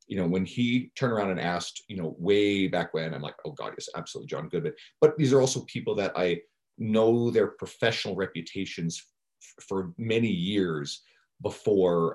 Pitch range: 85-115 Hz